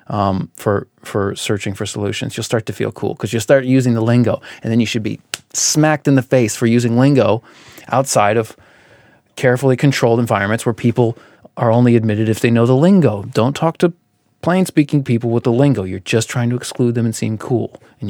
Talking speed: 210 wpm